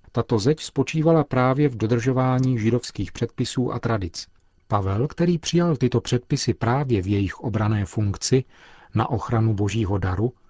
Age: 40-59